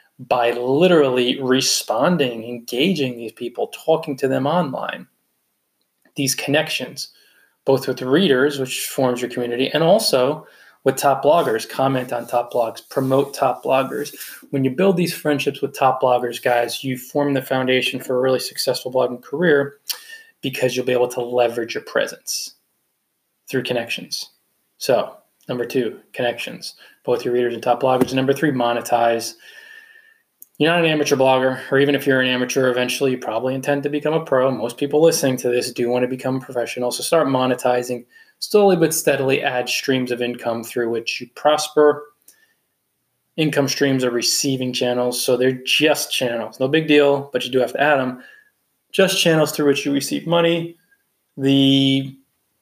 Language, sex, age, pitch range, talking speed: English, male, 20-39, 125-145 Hz, 165 wpm